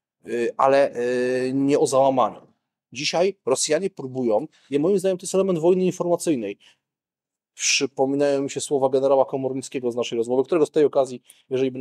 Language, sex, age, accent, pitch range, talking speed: Polish, male, 30-49, native, 130-165 Hz, 150 wpm